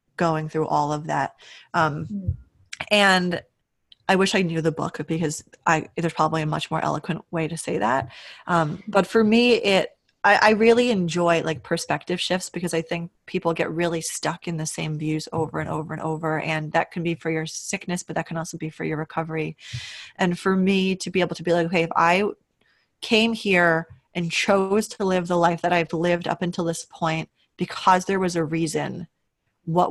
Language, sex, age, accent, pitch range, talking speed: English, female, 20-39, American, 160-180 Hz, 205 wpm